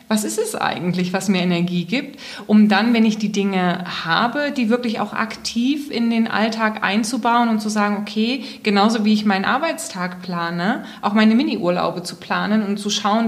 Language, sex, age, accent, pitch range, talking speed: German, female, 20-39, German, 185-220 Hz, 185 wpm